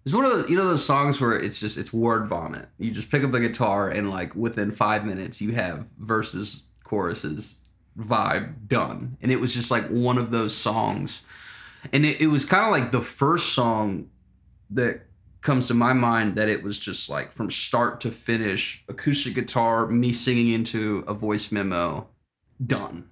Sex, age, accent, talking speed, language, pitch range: male, 20-39, American, 185 wpm, English, 105-135 Hz